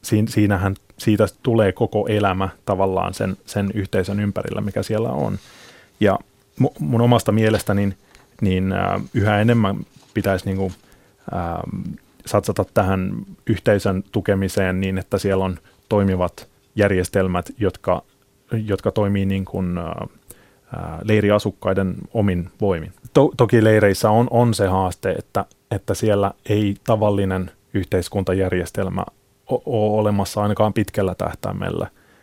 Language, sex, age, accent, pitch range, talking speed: Finnish, male, 30-49, native, 95-110 Hz, 120 wpm